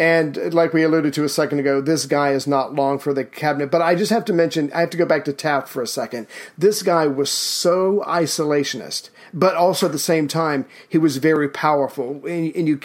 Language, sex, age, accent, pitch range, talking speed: English, male, 40-59, American, 140-165 Hz, 235 wpm